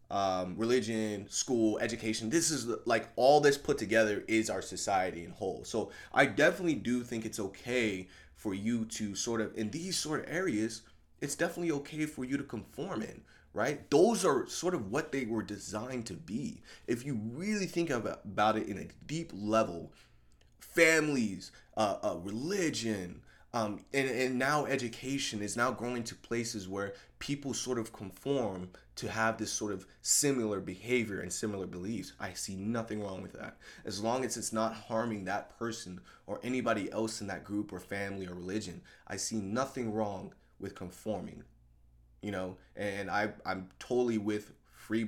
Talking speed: 175 wpm